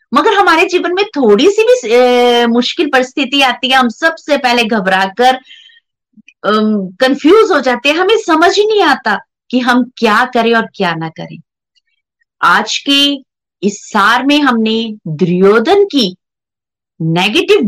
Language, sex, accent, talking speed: Hindi, female, native, 145 wpm